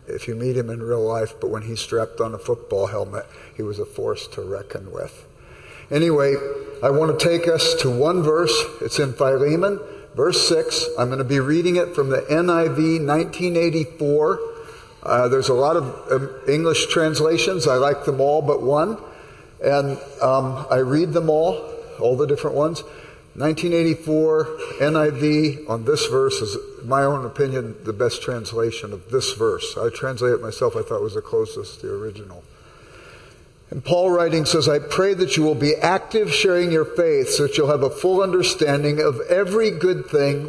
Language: English